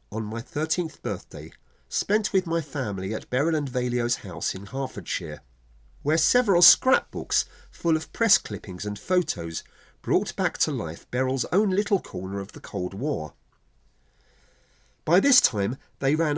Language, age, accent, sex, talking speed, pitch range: English, 40-59, British, male, 150 wpm, 100-165 Hz